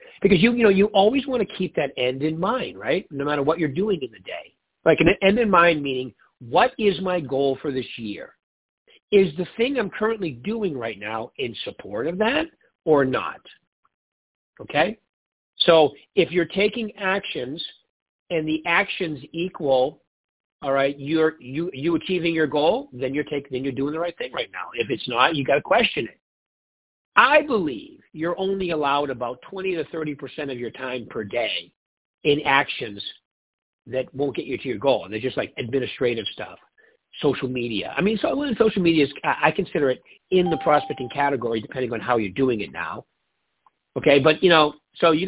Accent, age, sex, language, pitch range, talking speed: American, 50-69, male, English, 135-190 Hz, 190 wpm